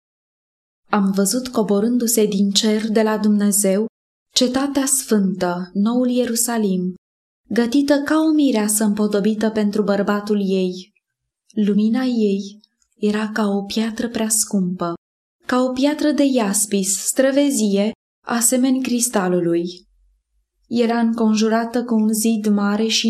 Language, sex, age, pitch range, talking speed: Romanian, female, 20-39, 200-245 Hz, 110 wpm